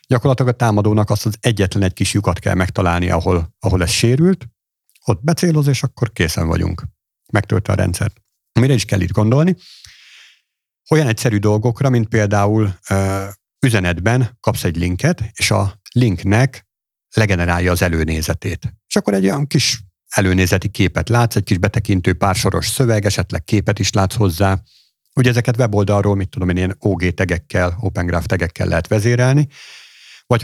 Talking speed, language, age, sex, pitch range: 150 wpm, Hungarian, 50-69, male, 95-120 Hz